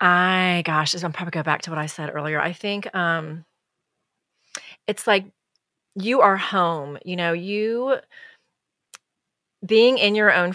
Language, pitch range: English, 170-205 Hz